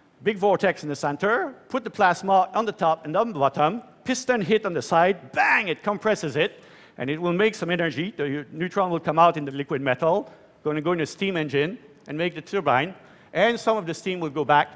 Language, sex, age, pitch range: Chinese, male, 50-69, 155-205 Hz